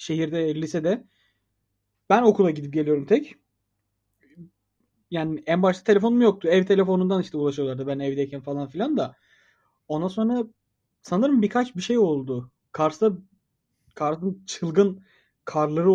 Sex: male